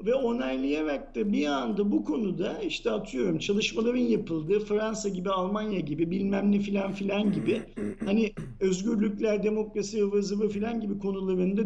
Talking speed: 140 wpm